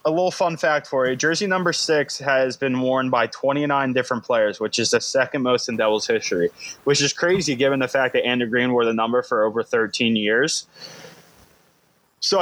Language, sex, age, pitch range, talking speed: English, male, 20-39, 110-140 Hz, 200 wpm